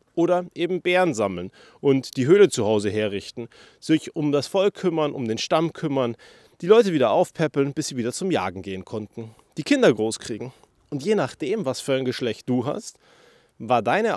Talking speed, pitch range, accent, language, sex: 185 wpm, 120-175 Hz, German, German, male